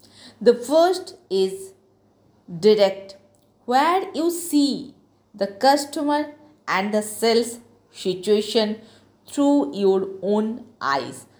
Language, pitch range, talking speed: Hindi, 175-230 Hz, 90 wpm